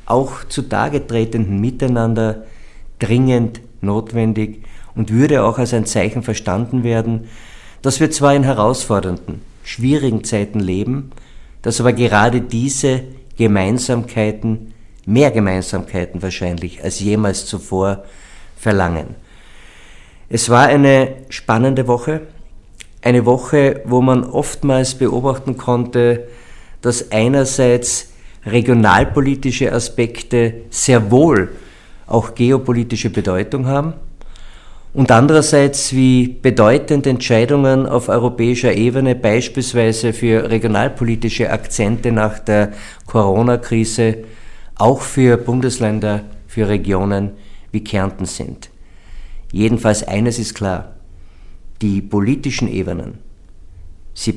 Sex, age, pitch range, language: male, 50-69, 105-125 Hz, German